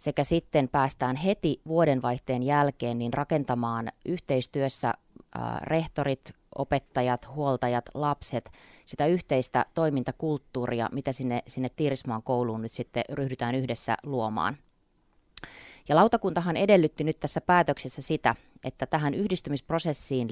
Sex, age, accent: female, 20-39, native